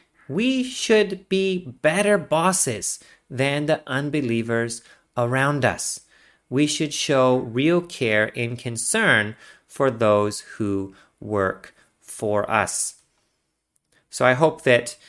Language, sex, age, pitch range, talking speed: English, male, 30-49, 110-165 Hz, 105 wpm